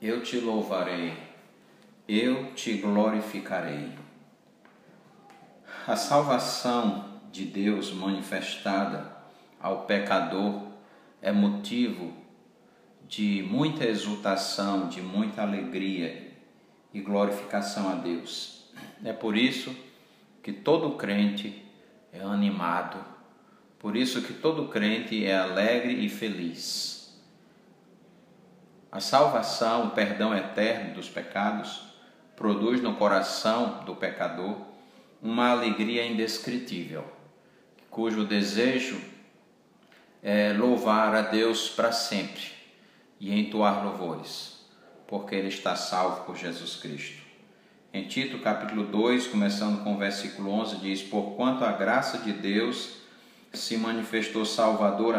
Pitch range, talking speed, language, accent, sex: 100-115 Hz, 100 wpm, Portuguese, Brazilian, male